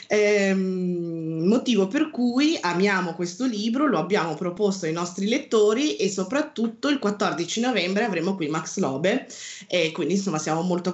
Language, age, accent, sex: Italian, 20-39, native, female